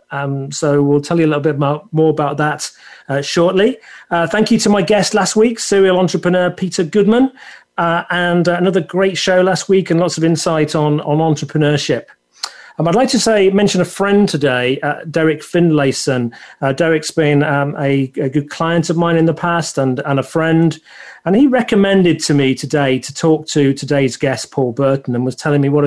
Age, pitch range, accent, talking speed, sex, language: 40-59, 145-180 Hz, British, 205 wpm, male, English